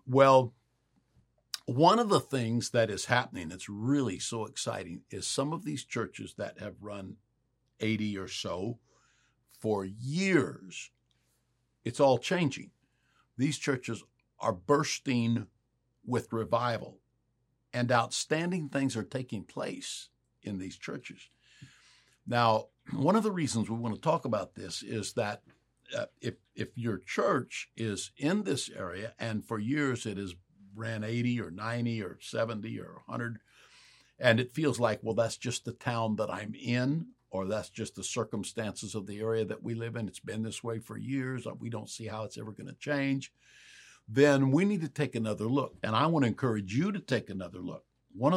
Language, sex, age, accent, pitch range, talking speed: English, male, 60-79, American, 110-130 Hz, 165 wpm